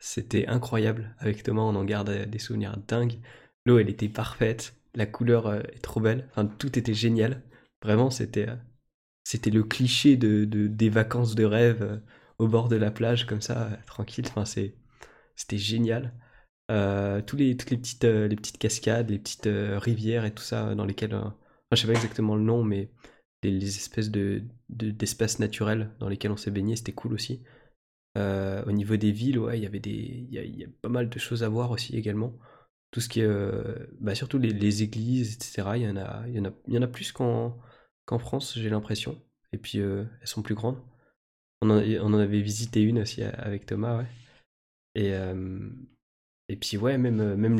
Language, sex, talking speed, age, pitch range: French, male, 195 wpm, 20-39, 105-120 Hz